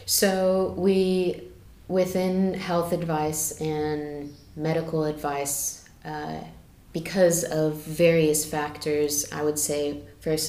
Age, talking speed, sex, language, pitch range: 20-39, 95 wpm, female, English, 145-165 Hz